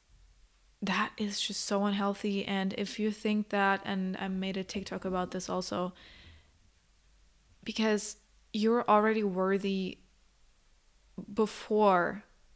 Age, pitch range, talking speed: 20-39, 185-215 Hz, 110 wpm